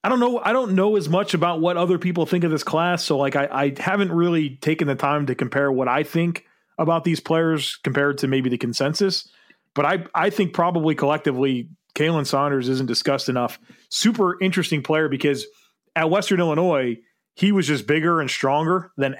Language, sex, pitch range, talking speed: English, male, 140-175 Hz, 195 wpm